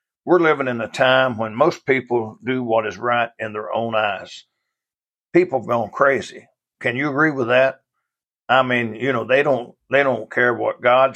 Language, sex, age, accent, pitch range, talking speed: English, male, 60-79, American, 115-135 Hz, 190 wpm